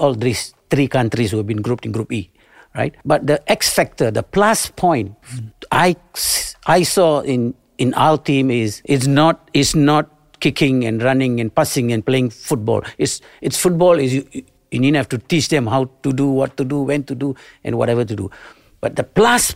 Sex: male